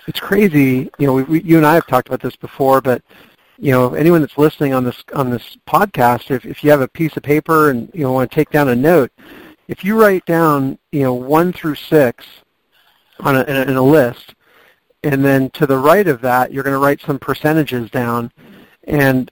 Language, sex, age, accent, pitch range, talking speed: English, male, 50-69, American, 130-150 Hz, 225 wpm